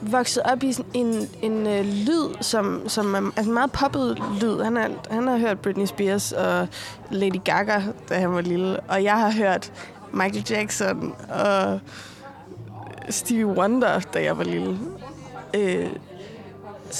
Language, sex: Danish, female